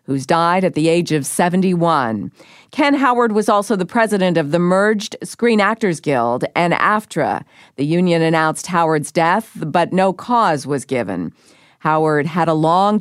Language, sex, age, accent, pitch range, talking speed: English, female, 50-69, American, 155-205 Hz, 160 wpm